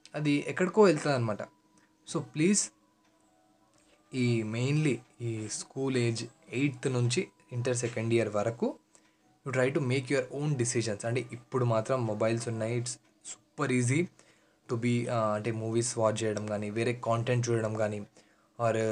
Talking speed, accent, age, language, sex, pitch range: 135 wpm, native, 20-39, Telugu, male, 115-135 Hz